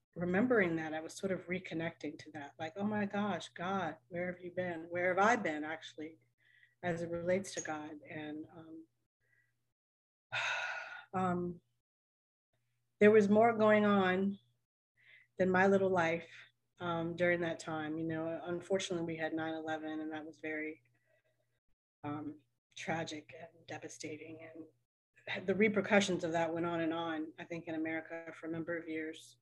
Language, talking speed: English, 155 wpm